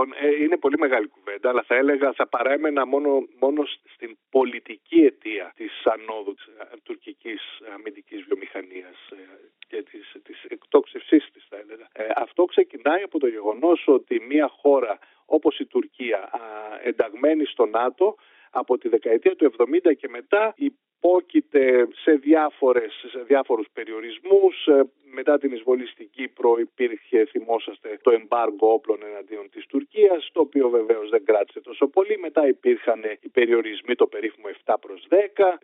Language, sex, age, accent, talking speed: Greek, male, 50-69, native, 135 wpm